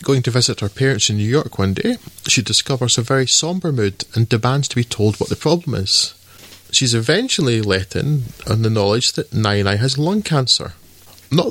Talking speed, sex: 205 wpm, male